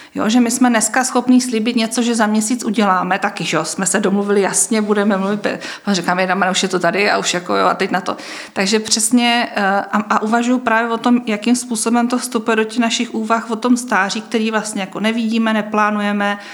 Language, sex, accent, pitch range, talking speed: Czech, female, native, 200-225 Hz, 205 wpm